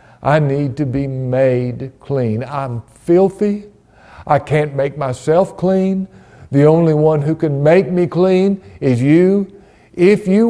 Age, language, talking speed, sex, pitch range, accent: 60-79, English, 145 wpm, male, 110-170 Hz, American